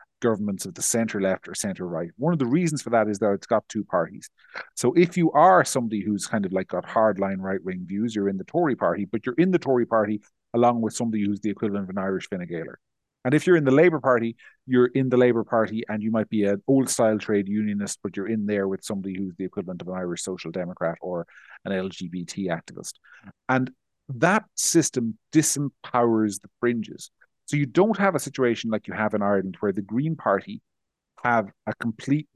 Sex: male